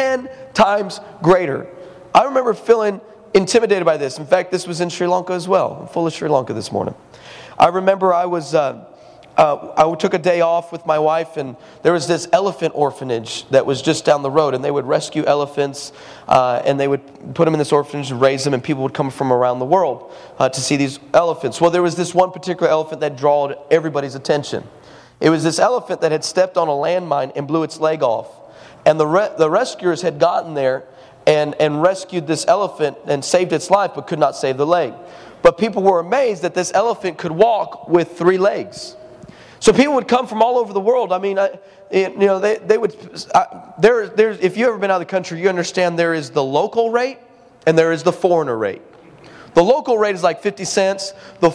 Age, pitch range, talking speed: 30-49, 155-195 Hz, 220 wpm